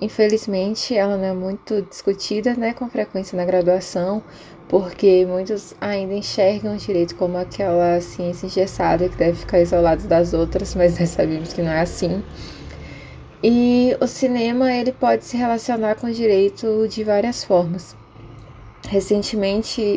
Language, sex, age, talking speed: Portuguese, female, 10-29, 140 wpm